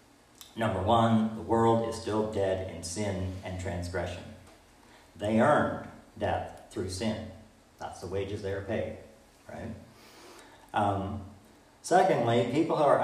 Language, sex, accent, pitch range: English, male, American, 95-115 Hz